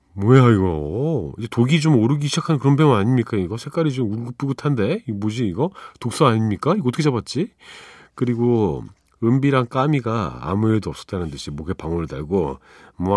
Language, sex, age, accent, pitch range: Korean, male, 40-59, native, 90-130 Hz